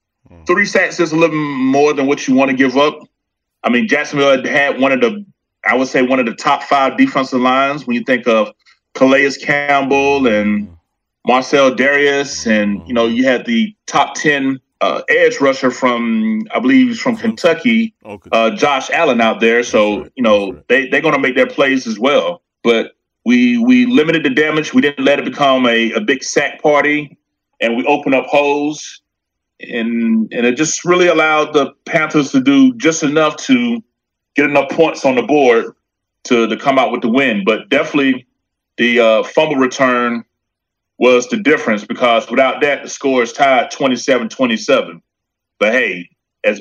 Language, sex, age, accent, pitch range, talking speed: English, male, 30-49, American, 120-160 Hz, 180 wpm